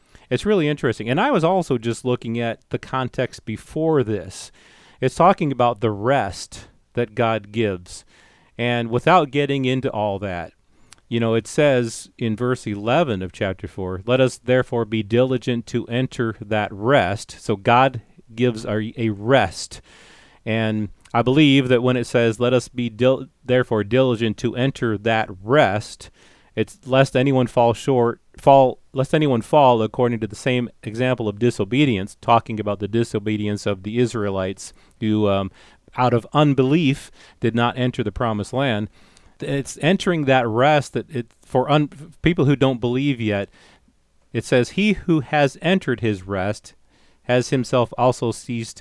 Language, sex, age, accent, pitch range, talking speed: English, male, 40-59, American, 110-130 Hz, 155 wpm